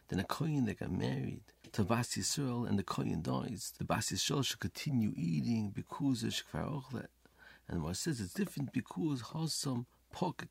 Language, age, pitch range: English, 50-69, 110-145 Hz